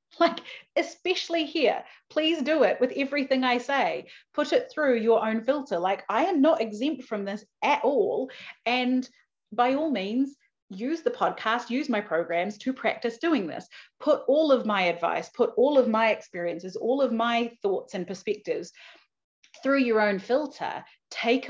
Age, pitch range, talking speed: 30-49, 205-275 Hz, 165 wpm